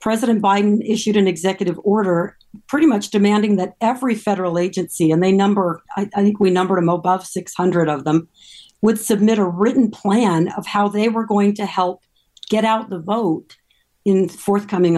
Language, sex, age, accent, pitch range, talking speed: English, female, 50-69, American, 185-225 Hz, 175 wpm